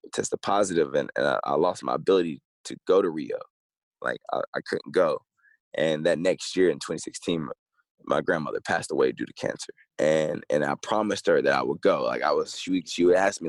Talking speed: 215 wpm